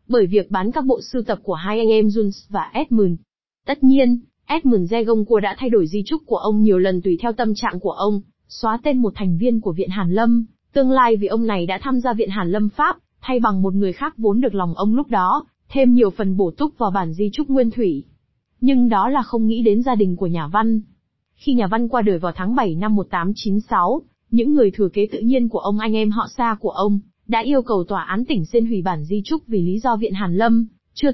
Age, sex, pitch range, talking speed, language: 20-39, female, 200-250 Hz, 250 wpm, Vietnamese